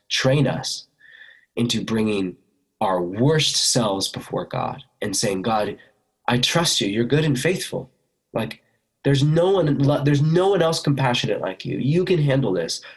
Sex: male